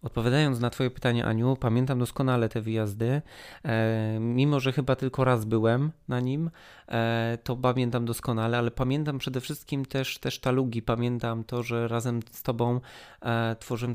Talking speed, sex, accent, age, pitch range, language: 145 wpm, male, native, 20-39, 115-135 Hz, Polish